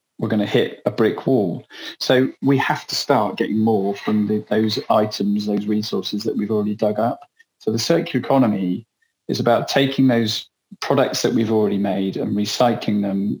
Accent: British